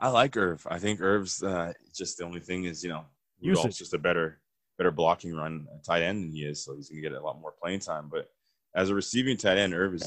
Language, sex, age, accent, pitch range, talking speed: English, male, 20-39, American, 80-105 Hz, 270 wpm